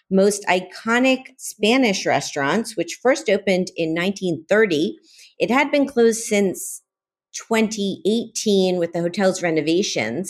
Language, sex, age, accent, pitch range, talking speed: English, female, 40-59, American, 155-210 Hz, 110 wpm